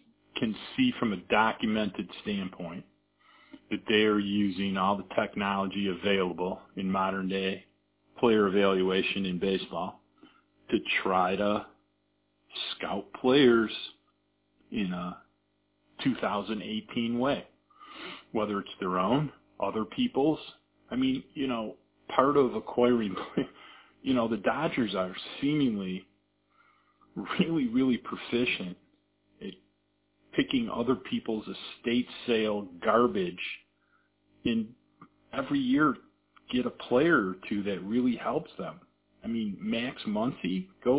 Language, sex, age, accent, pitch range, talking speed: English, male, 40-59, American, 100-155 Hz, 110 wpm